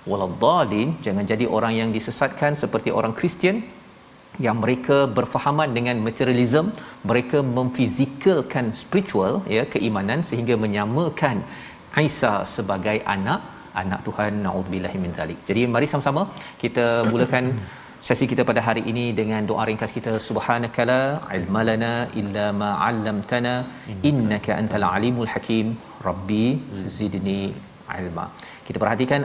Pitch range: 110-130 Hz